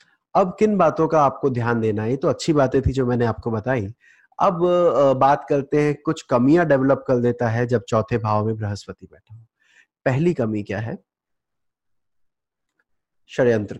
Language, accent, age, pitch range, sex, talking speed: Hindi, native, 20-39, 125-170 Hz, male, 165 wpm